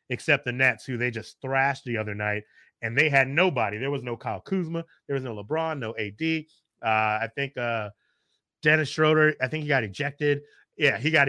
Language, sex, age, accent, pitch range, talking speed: English, male, 30-49, American, 130-165 Hz, 205 wpm